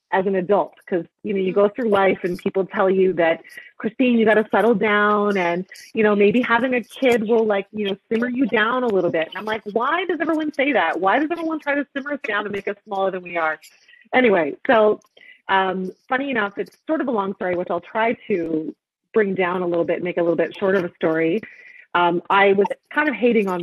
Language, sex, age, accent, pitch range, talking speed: English, female, 30-49, American, 180-235 Hz, 240 wpm